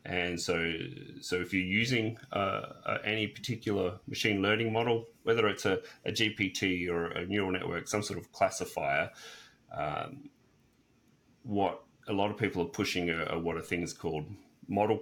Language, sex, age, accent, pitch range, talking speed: English, male, 30-49, Australian, 85-95 Hz, 165 wpm